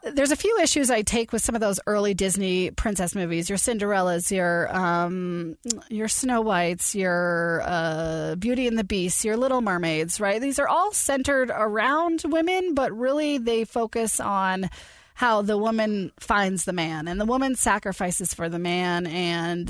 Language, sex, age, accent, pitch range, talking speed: English, female, 30-49, American, 180-245 Hz, 170 wpm